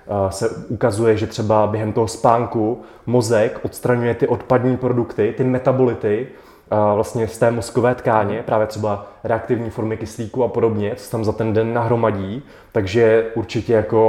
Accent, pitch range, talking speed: native, 105-120 Hz, 150 wpm